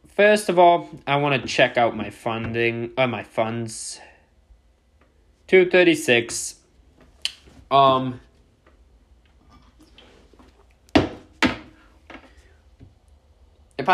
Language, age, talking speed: English, 20-39, 60 wpm